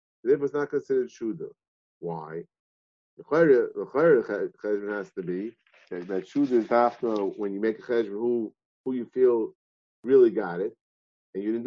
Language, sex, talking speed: English, male, 160 wpm